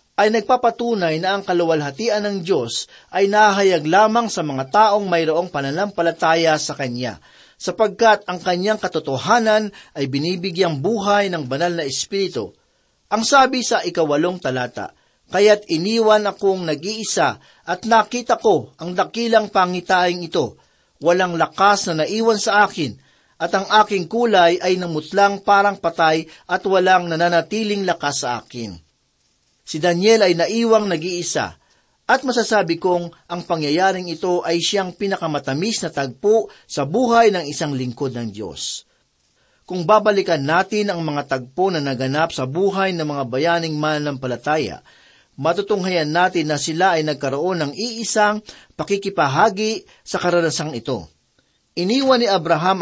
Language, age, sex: Filipino, 40-59, male